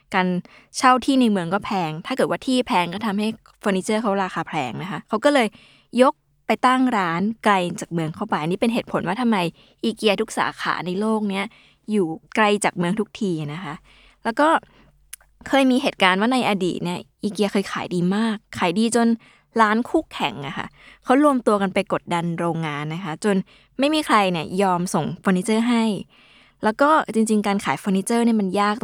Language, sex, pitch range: Thai, female, 180-230 Hz